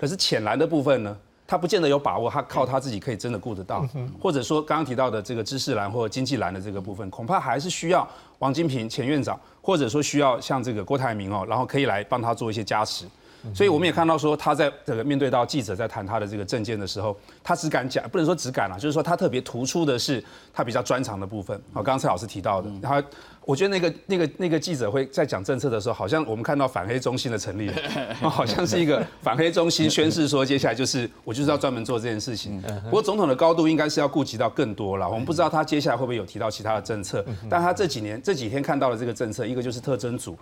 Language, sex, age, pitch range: Chinese, male, 30-49, 110-150 Hz